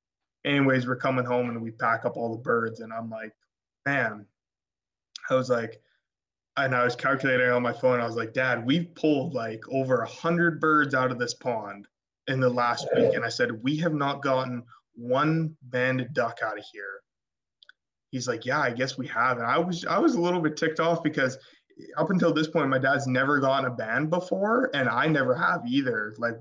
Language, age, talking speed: English, 20-39, 210 wpm